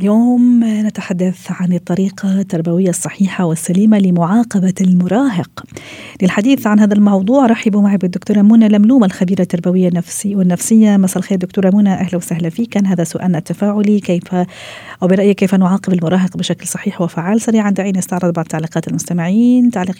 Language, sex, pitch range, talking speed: Arabic, female, 180-215 Hz, 145 wpm